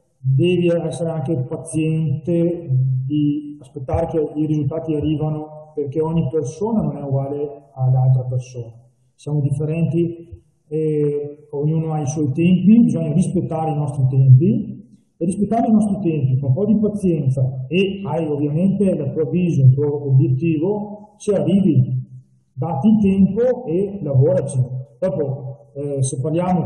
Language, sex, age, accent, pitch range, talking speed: Italian, male, 40-59, native, 135-165 Hz, 135 wpm